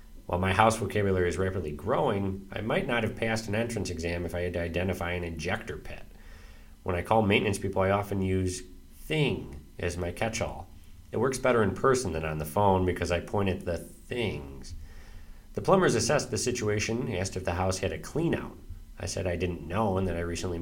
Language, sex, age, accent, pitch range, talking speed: English, male, 40-59, American, 85-110 Hz, 205 wpm